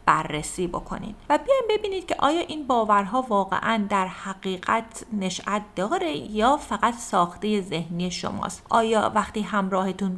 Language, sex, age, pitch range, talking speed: Persian, female, 30-49, 190-265 Hz, 130 wpm